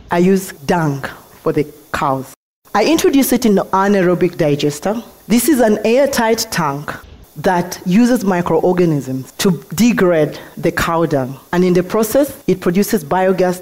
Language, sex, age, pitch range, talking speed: English, female, 30-49, 155-215 Hz, 145 wpm